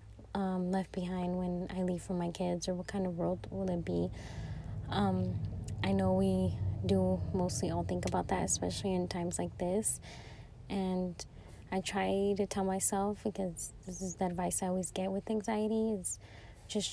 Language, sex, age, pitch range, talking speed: English, female, 20-39, 175-205 Hz, 175 wpm